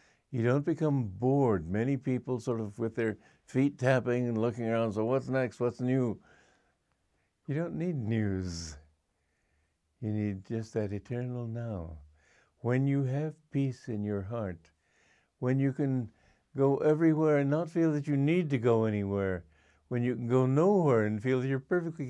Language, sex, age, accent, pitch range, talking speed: English, male, 60-79, American, 85-135 Hz, 165 wpm